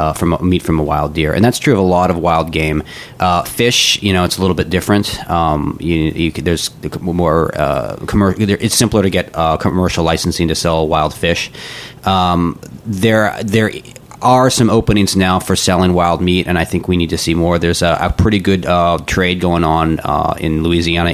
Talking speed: 210 wpm